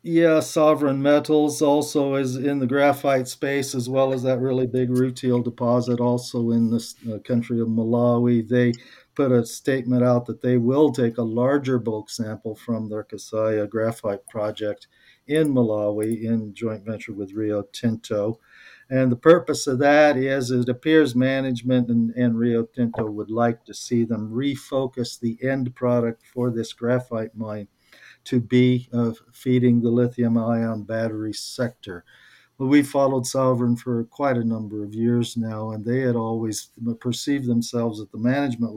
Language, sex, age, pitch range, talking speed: English, male, 50-69, 110-125 Hz, 160 wpm